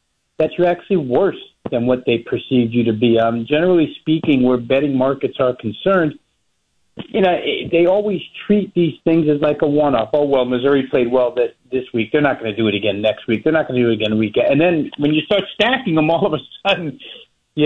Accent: American